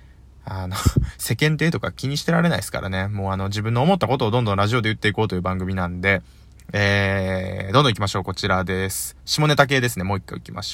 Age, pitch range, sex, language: 20-39, 95-160 Hz, male, Japanese